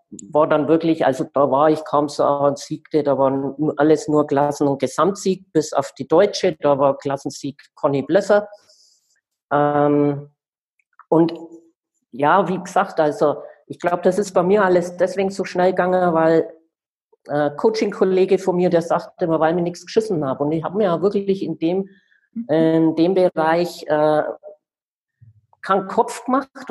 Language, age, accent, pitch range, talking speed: German, 50-69, German, 160-215 Hz, 160 wpm